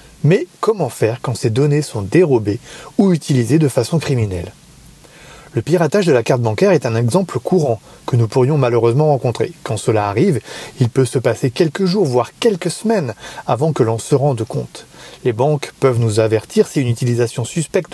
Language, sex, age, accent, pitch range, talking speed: French, male, 30-49, French, 120-175 Hz, 185 wpm